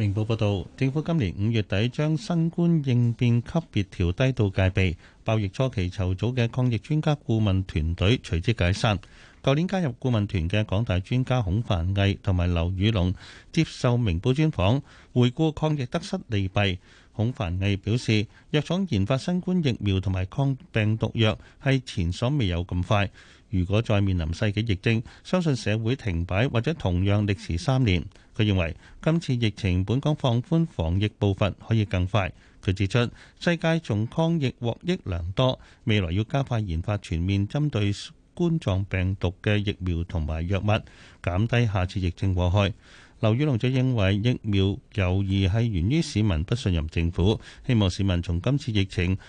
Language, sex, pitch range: Chinese, male, 95-130 Hz